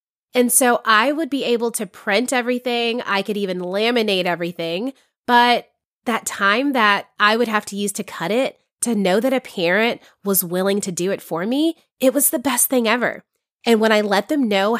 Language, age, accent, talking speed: English, 20-39, American, 205 wpm